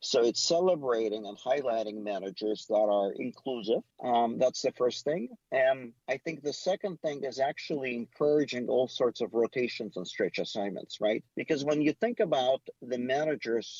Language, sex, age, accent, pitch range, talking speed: English, male, 50-69, American, 115-145 Hz, 165 wpm